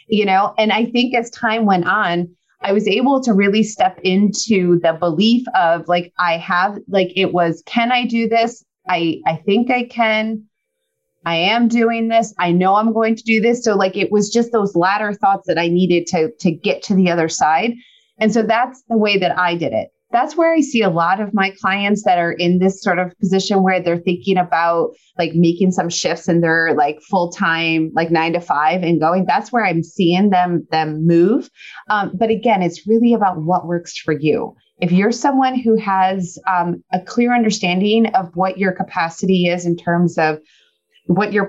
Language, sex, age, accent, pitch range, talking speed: English, female, 30-49, American, 175-220 Hz, 205 wpm